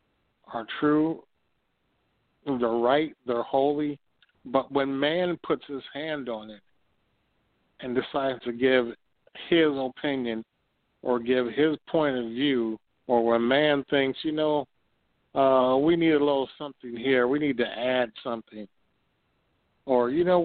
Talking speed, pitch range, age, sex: 140 wpm, 120-145 Hz, 50-69, male